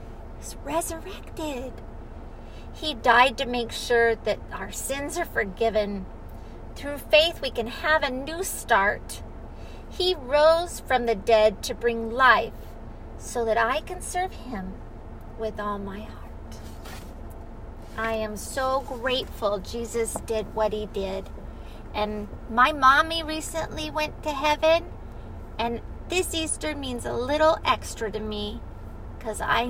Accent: American